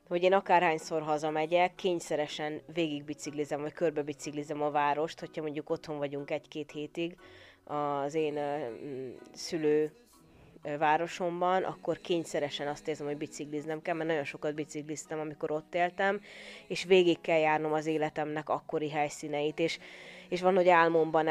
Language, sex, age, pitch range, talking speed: Hungarian, female, 20-39, 155-180 Hz, 130 wpm